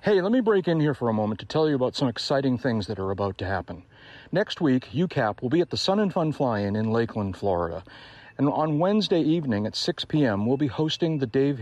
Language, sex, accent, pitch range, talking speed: English, male, American, 105-145 Hz, 250 wpm